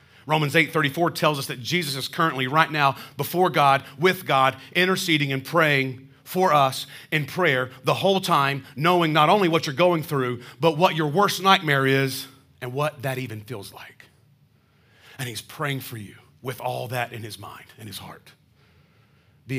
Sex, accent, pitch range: male, American, 115-145 Hz